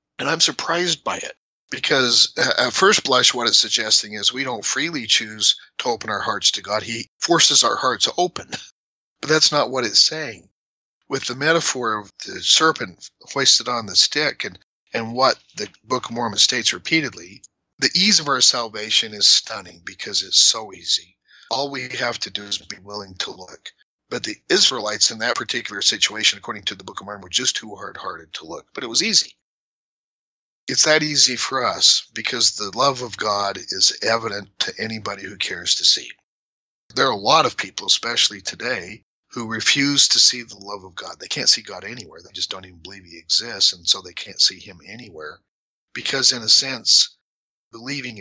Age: 40-59